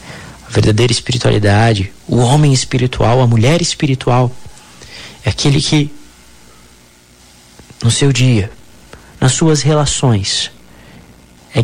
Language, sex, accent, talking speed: Portuguese, male, Brazilian, 95 wpm